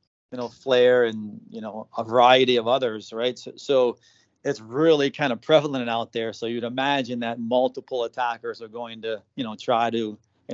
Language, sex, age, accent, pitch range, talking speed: English, male, 30-49, American, 115-135 Hz, 195 wpm